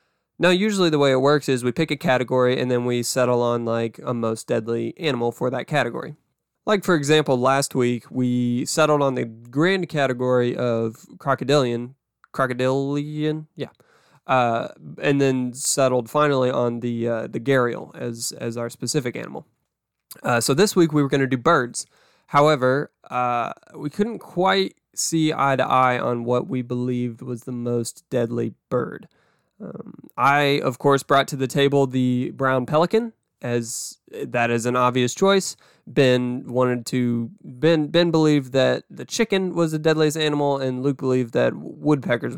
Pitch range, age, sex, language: 120-150 Hz, 20-39, male, English